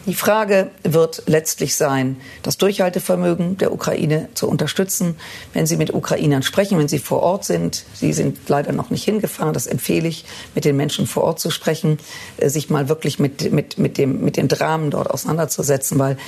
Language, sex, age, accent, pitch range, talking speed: German, female, 50-69, German, 145-180 Hz, 185 wpm